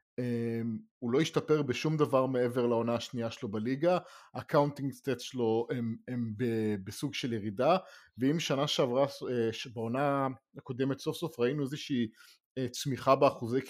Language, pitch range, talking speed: English, 120-150 Hz, 105 wpm